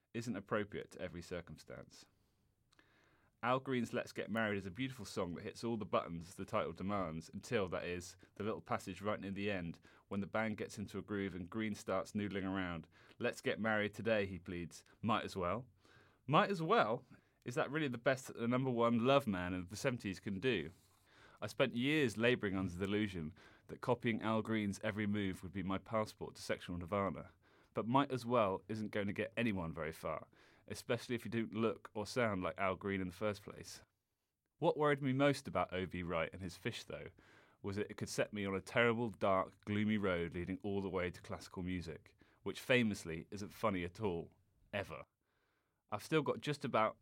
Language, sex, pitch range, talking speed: English, male, 95-115 Hz, 200 wpm